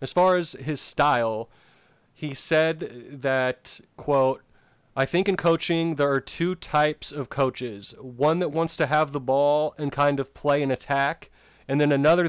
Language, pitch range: English, 130-150 Hz